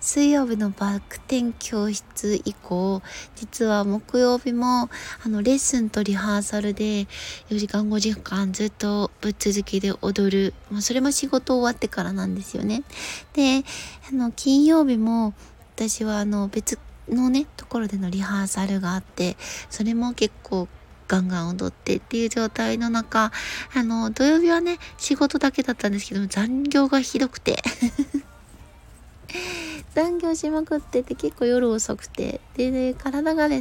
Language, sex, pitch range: Japanese, female, 205-265 Hz